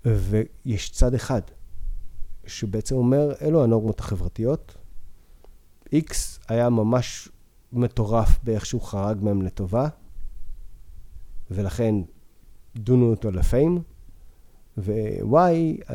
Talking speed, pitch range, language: 85 wpm, 90-125 Hz, Hebrew